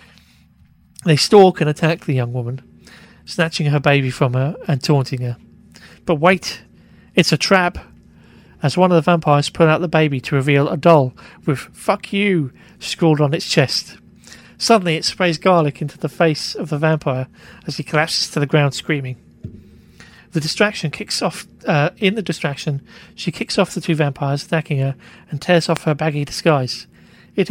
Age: 40-59